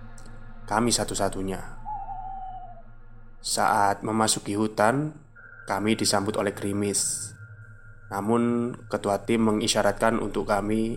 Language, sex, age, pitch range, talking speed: Indonesian, male, 20-39, 105-120 Hz, 80 wpm